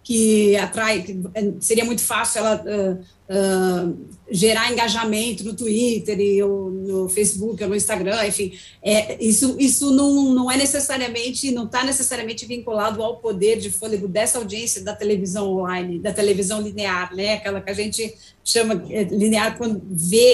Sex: female